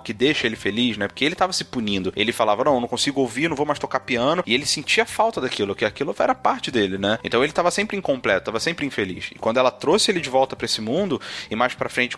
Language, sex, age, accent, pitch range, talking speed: Portuguese, male, 30-49, Brazilian, 115-185 Hz, 270 wpm